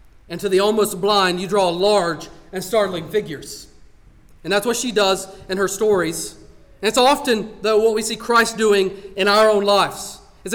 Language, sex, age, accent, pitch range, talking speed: English, male, 40-59, American, 135-200 Hz, 190 wpm